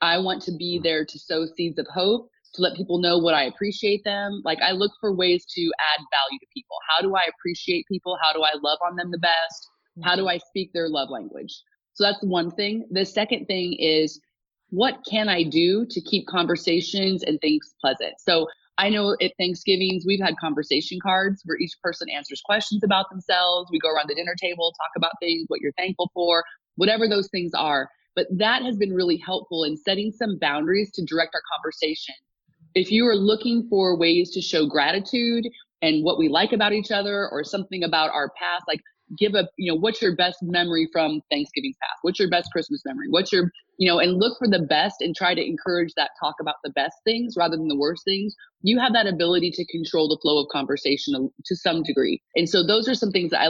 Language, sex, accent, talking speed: English, female, American, 220 wpm